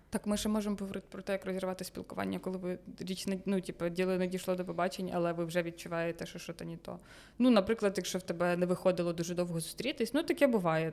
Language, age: Ukrainian, 20-39